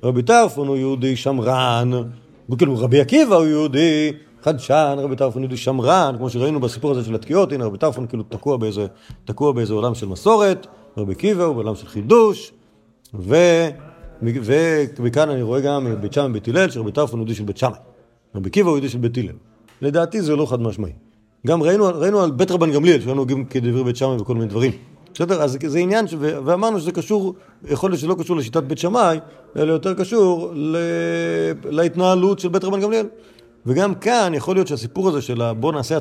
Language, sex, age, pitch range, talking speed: Hebrew, male, 40-59, 120-170 Hz, 190 wpm